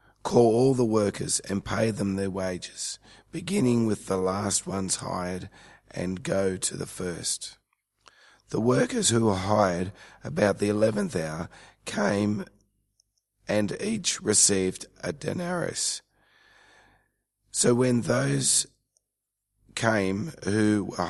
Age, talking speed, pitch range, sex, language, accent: 40-59, 115 wpm, 95-115 Hz, male, English, Australian